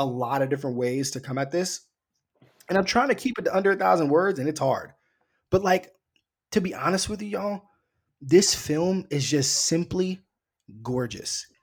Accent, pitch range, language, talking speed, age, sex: American, 130-165 Hz, English, 190 wpm, 20-39, male